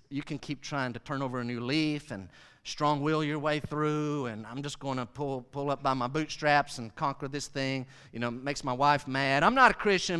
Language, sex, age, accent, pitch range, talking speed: English, male, 50-69, American, 135-190 Hz, 245 wpm